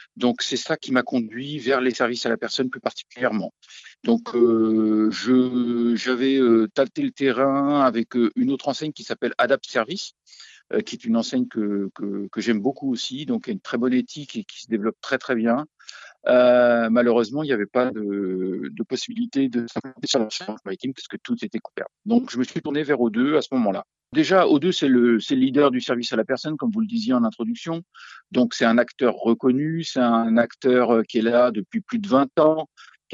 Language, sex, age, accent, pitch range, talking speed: French, male, 50-69, French, 120-165 Hz, 215 wpm